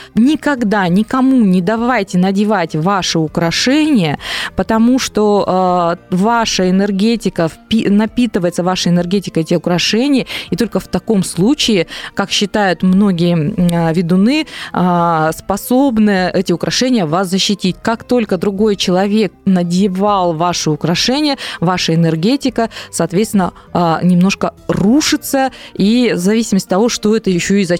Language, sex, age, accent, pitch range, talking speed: Russian, female, 20-39, native, 175-230 Hz, 110 wpm